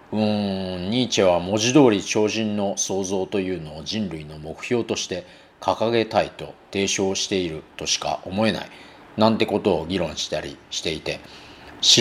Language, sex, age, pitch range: Japanese, male, 40-59, 90-120 Hz